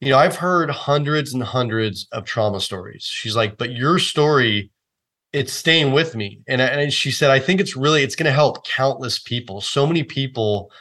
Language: English